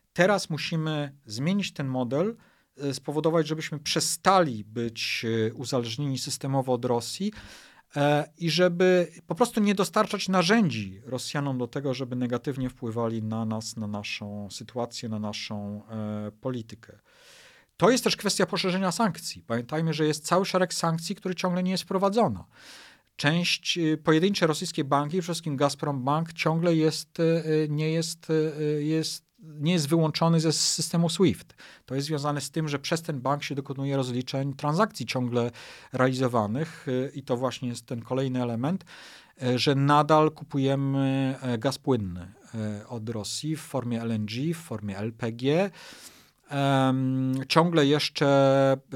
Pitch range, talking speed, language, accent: 120-165 Hz, 130 wpm, Polish, native